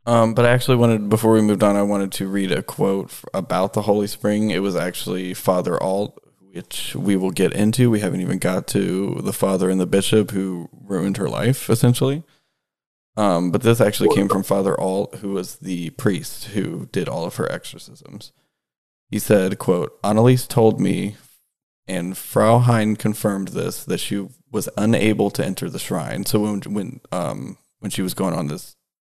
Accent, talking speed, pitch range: American, 190 wpm, 100-120 Hz